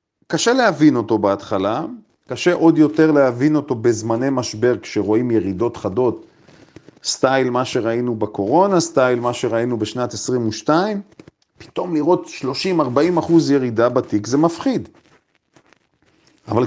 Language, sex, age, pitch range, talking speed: Hebrew, male, 40-59, 120-155 Hz, 115 wpm